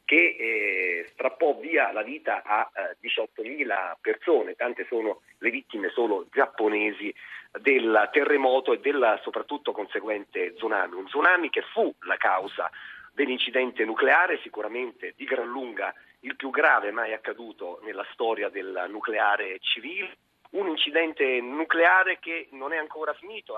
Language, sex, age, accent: Italian, male, 40-59, native